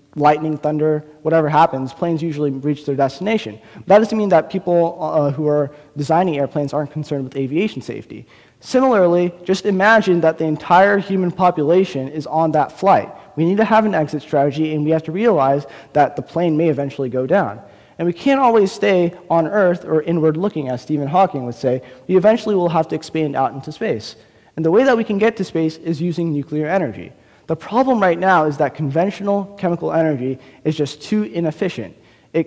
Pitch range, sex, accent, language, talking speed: 145-185 Hz, male, American, English, 195 wpm